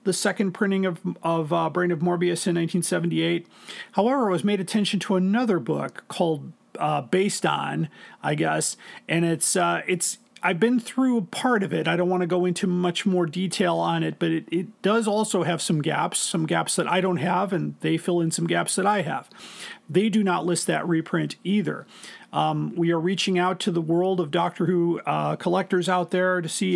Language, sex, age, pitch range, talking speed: English, male, 40-59, 170-195 Hz, 210 wpm